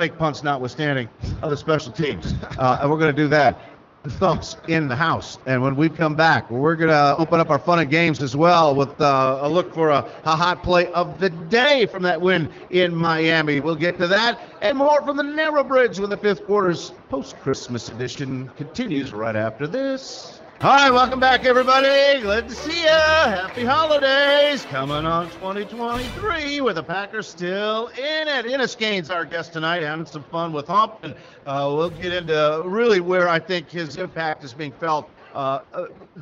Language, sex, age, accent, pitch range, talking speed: English, male, 50-69, American, 140-195 Hz, 195 wpm